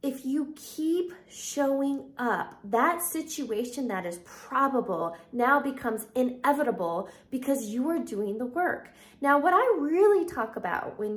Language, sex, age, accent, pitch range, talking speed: English, female, 20-39, American, 215-275 Hz, 140 wpm